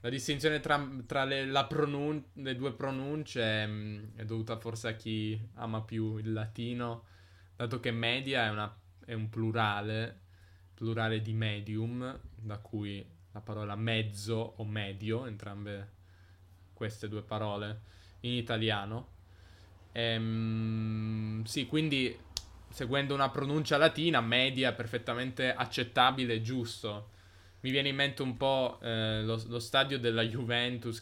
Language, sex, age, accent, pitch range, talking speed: Italian, male, 10-29, native, 105-120 Hz, 130 wpm